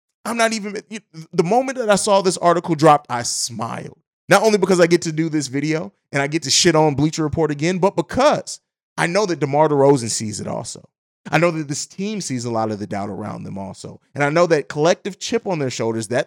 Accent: American